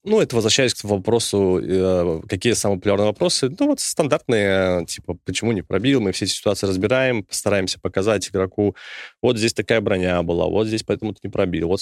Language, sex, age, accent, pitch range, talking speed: Russian, male, 20-39, native, 95-120 Hz, 180 wpm